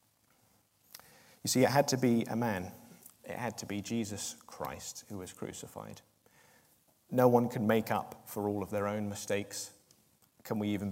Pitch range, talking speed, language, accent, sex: 100-120 Hz, 170 wpm, English, British, male